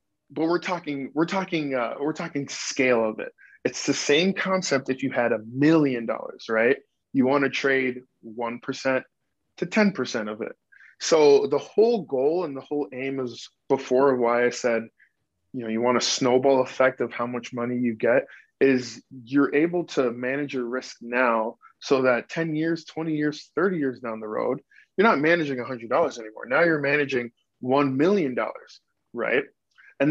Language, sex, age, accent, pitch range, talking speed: English, male, 20-39, American, 125-160 Hz, 185 wpm